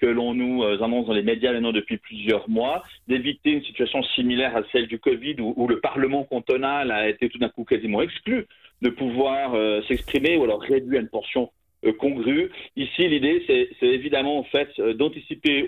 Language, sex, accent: French, male, French